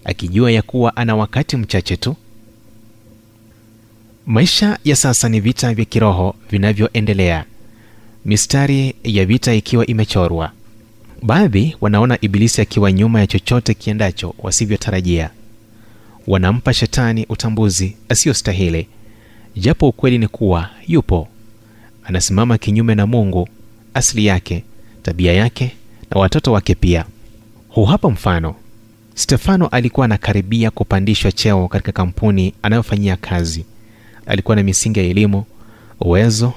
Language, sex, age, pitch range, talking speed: Swahili, male, 30-49, 100-115 Hz, 110 wpm